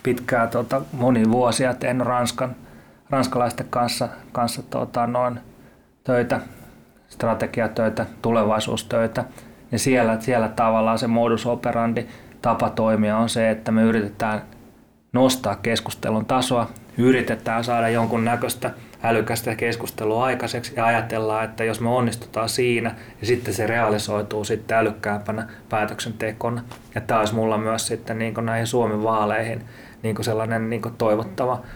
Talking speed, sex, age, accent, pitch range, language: 125 wpm, male, 30-49, native, 115-125 Hz, Finnish